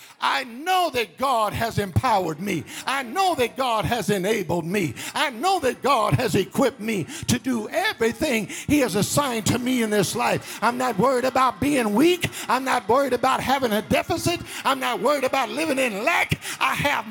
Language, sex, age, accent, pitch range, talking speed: English, male, 50-69, American, 215-255 Hz, 190 wpm